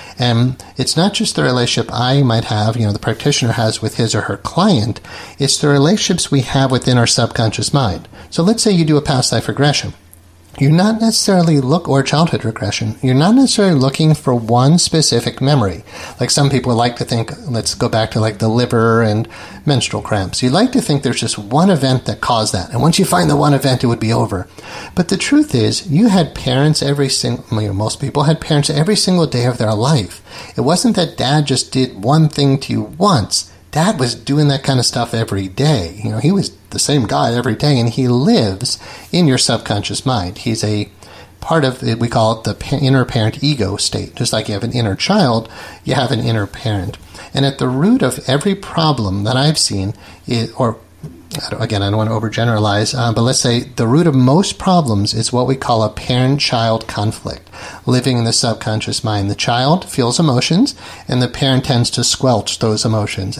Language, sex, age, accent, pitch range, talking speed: English, male, 40-59, American, 110-145 Hz, 210 wpm